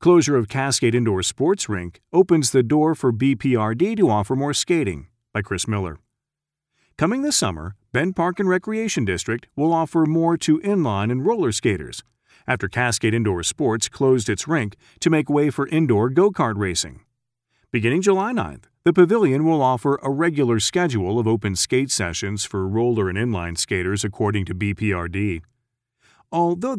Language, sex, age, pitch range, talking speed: English, male, 40-59, 105-155 Hz, 160 wpm